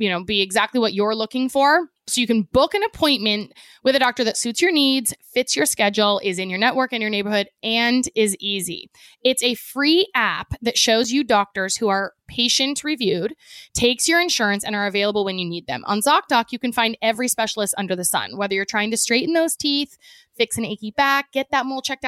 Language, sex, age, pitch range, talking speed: English, female, 20-39, 205-265 Hz, 220 wpm